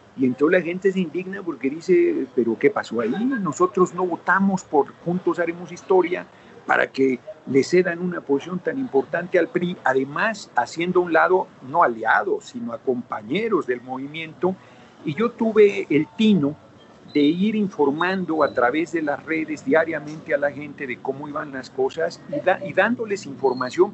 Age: 50-69